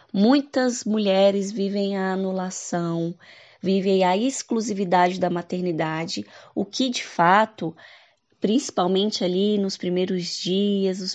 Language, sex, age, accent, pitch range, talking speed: Portuguese, female, 20-39, Brazilian, 175-225 Hz, 110 wpm